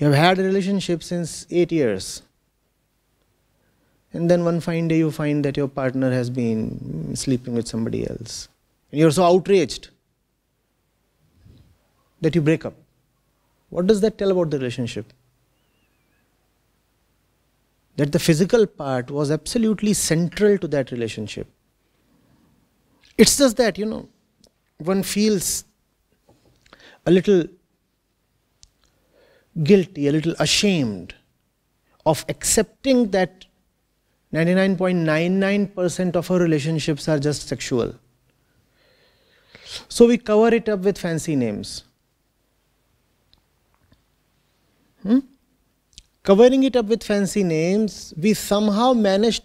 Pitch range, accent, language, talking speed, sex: 140-210 Hz, Indian, English, 110 wpm, male